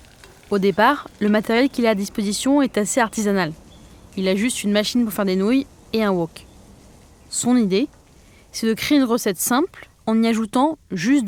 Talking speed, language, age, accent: 185 wpm, French, 20-39, French